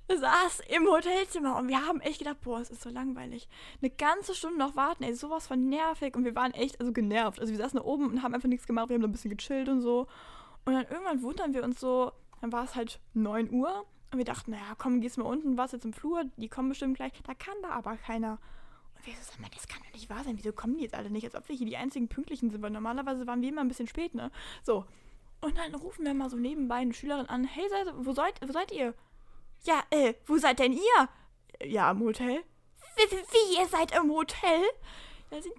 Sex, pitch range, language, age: female, 245-325 Hz, German, 10-29